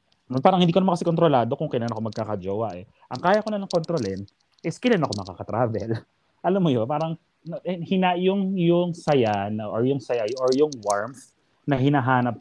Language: Filipino